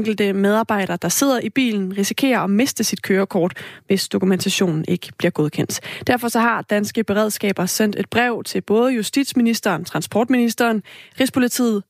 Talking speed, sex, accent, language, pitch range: 140 wpm, female, native, Danish, 200-245 Hz